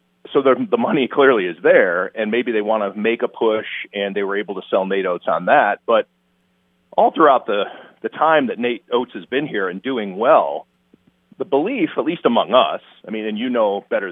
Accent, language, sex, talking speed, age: American, English, male, 220 wpm, 40-59